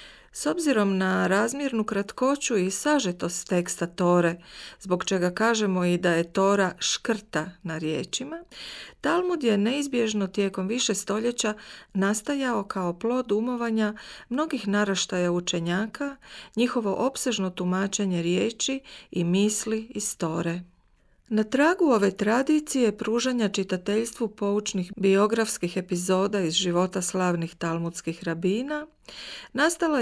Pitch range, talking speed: 185-240 Hz, 110 wpm